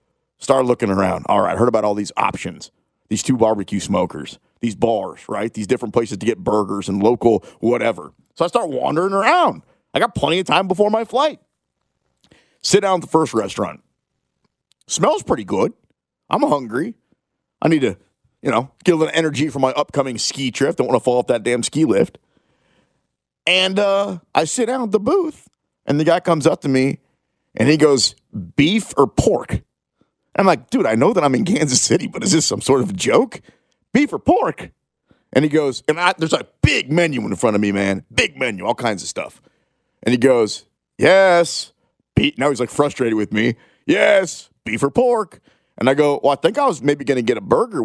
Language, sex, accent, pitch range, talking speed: English, male, American, 110-170 Hz, 205 wpm